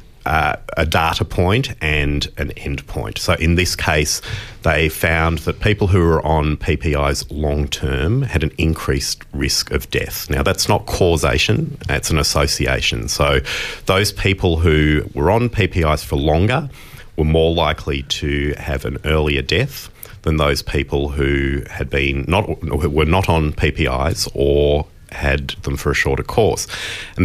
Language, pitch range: English, 70-90 Hz